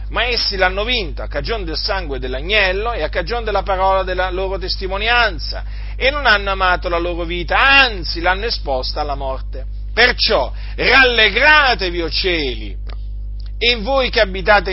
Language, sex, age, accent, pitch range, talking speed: Italian, male, 40-59, native, 140-230 Hz, 150 wpm